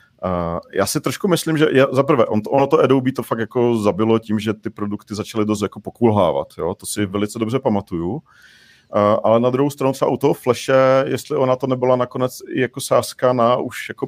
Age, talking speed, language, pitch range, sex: 40-59, 215 wpm, Czech, 105-125 Hz, male